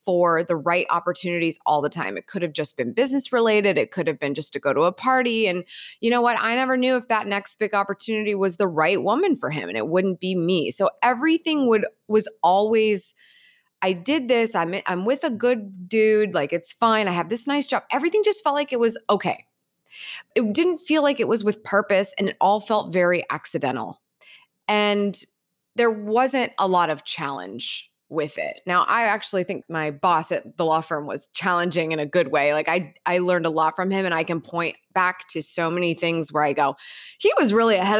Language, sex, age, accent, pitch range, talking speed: English, female, 20-39, American, 175-240 Hz, 220 wpm